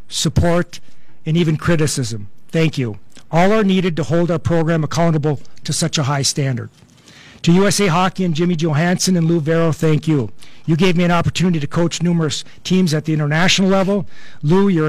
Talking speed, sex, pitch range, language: 180 wpm, male, 155-190 Hz, English